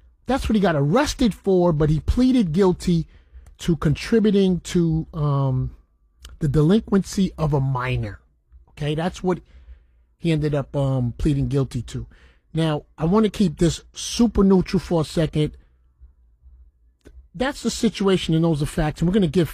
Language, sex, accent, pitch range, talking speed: English, male, American, 110-180 Hz, 160 wpm